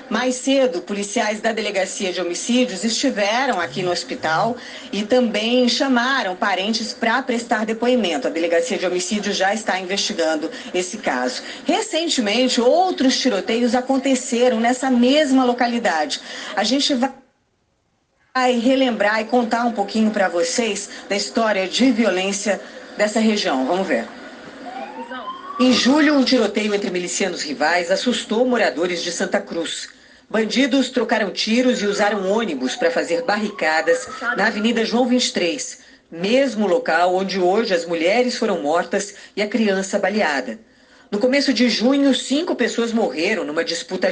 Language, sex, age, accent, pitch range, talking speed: Portuguese, female, 40-59, Brazilian, 195-255 Hz, 135 wpm